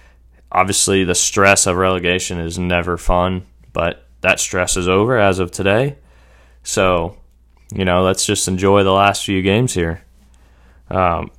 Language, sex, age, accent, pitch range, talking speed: English, male, 20-39, American, 80-100 Hz, 150 wpm